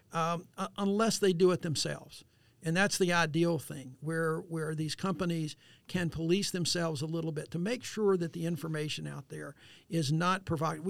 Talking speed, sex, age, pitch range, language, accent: 175 wpm, male, 50-69, 155-180 Hz, English, American